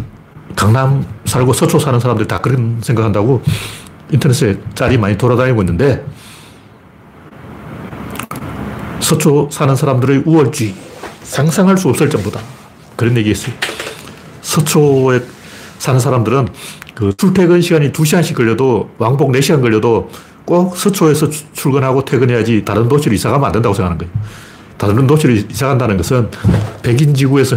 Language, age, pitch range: Korean, 40-59, 110-155 Hz